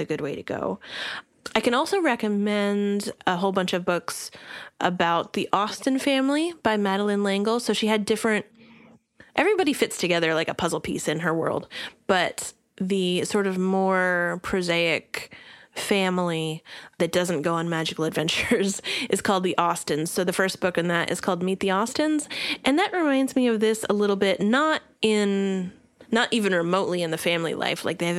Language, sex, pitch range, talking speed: English, female, 175-220 Hz, 180 wpm